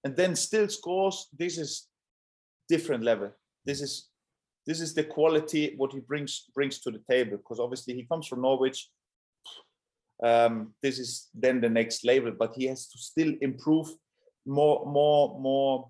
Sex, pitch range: male, 125-155 Hz